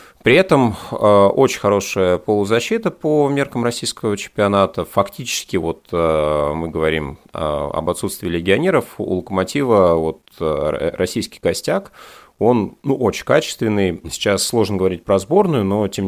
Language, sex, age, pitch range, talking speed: Russian, male, 30-49, 85-110 Hz, 120 wpm